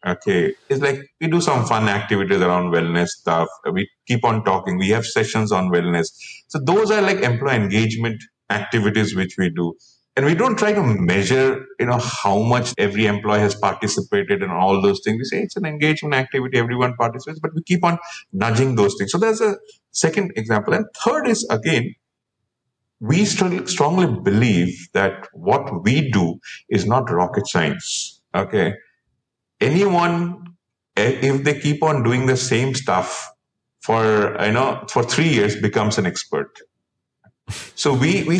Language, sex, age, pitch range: English, male, 50-69, 100-150 Hz